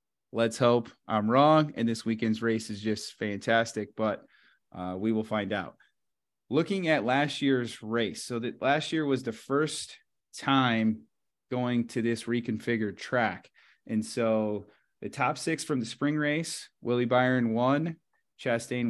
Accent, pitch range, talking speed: American, 110-130 Hz, 150 wpm